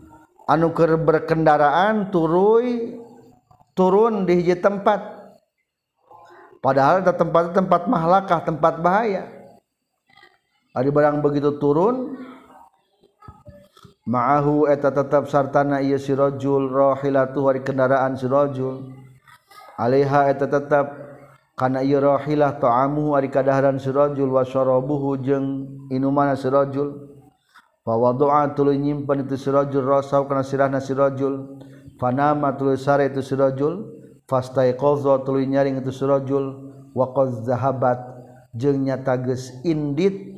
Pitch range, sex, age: 135-145 Hz, male, 40-59